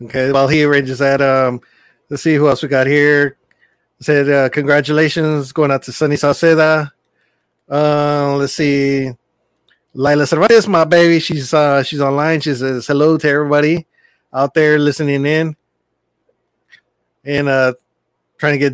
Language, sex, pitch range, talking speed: English, male, 140-165 Hz, 150 wpm